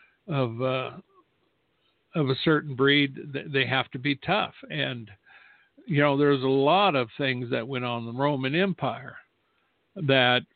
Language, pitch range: English, 130-165 Hz